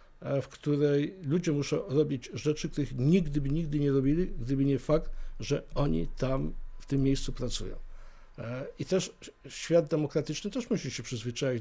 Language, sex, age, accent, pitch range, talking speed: Polish, male, 50-69, native, 125-155 Hz, 155 wpm